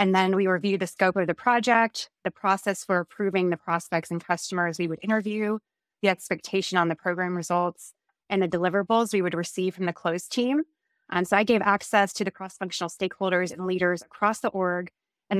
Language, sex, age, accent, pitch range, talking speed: English, female, 20-39, American, 170-200 Hz, 200 wpm